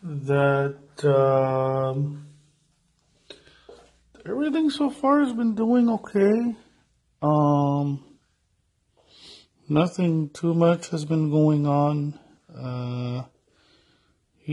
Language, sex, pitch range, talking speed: English, male, 130-160 Hz, 75 wpm